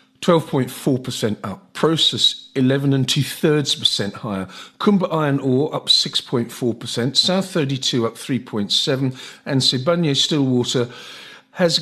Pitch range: 130-165 Hz